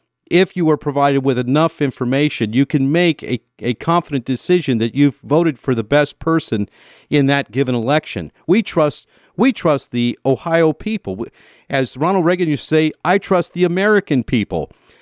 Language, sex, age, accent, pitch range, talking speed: English, male, 50-69, American, 125-170 Hz, 170 wpm